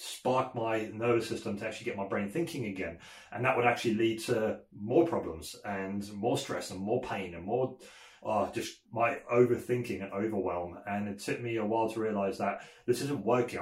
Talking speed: 200 wpm